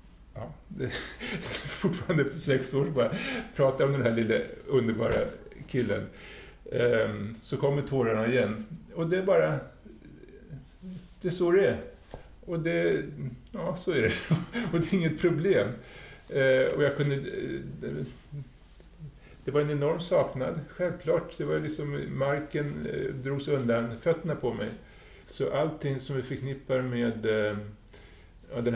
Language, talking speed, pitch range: Swedish, 135 wpm, 120-160 Hz